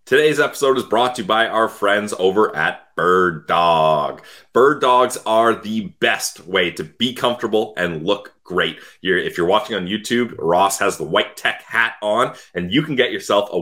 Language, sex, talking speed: English, male, 195 wpm